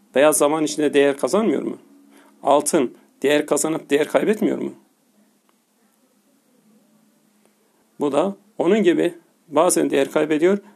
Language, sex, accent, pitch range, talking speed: Turkish, male, native, 150-230 Hz, 105 wpm